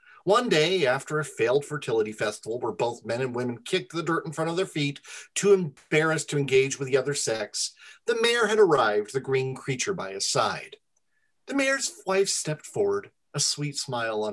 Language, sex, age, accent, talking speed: English, male, 40-59, American, 195 wpm